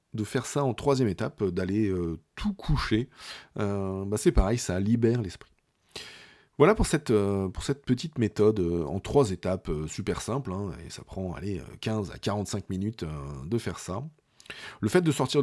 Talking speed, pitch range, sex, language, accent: 170 wpm, 90-120 Hz, male, French, French